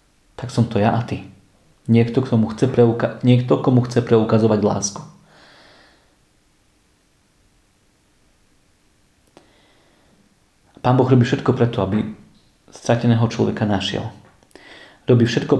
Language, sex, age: Slovak, male, 40-59